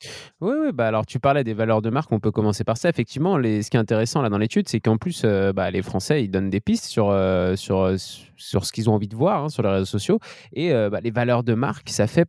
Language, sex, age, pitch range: French, male, 20-39, 105-125 Hz